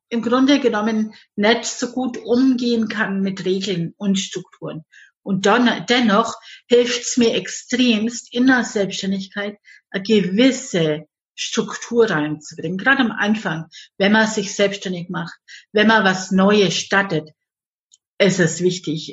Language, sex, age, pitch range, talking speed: German, female, 50-69, 180-220 Hz, 130 wpm